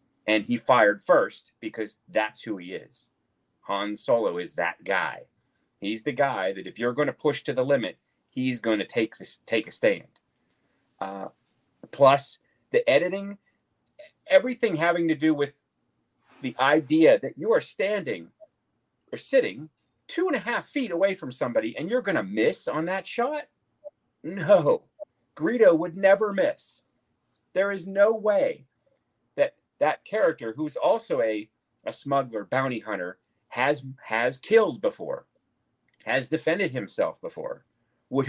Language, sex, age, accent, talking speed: English, male, 40-59, American, 145 wpm